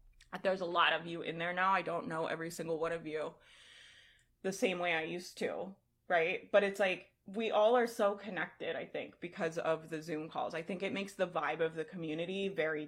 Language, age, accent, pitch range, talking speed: English, 20-39, American, 165-230 Hz, 225 wpm